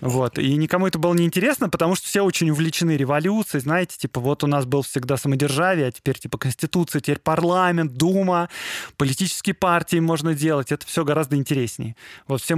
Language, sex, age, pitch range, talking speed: Russian, male, 20-39, 140-180 Hz, 180 wpm